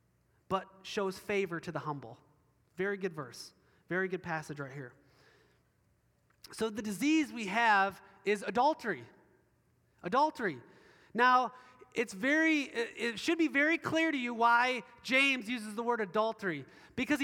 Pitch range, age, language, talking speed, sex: 200-260 Hz, 30-49, English, 135 wpm, male